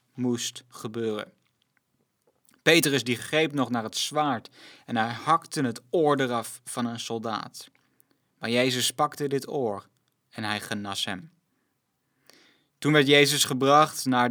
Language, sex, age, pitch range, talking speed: Dutch, male, 20-39, 120-150 Hz, 135 wpm